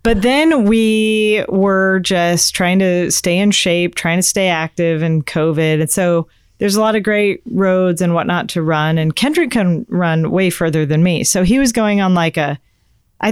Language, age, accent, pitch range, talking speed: English, 40-59, American, 165-215 Hz, 200 wpm